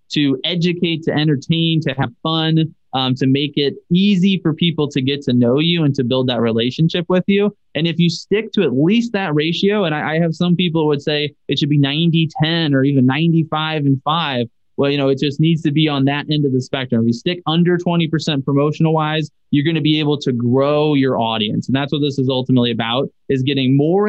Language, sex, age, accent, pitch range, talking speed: English, male, 20-39, American, 135-170 Hz, 230 wpm